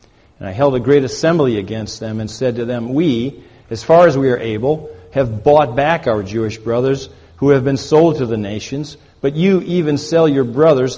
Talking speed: 210 wpm